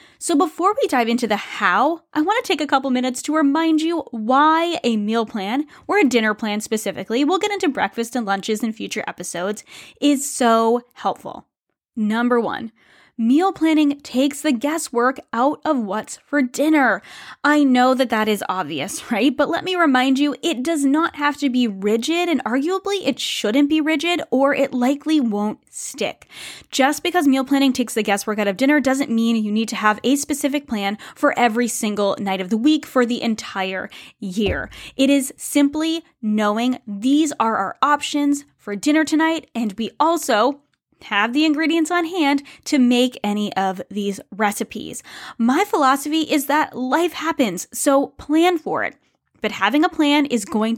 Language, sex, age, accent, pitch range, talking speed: English, female, 10-29, American, 225-300 Hz, 180 wpm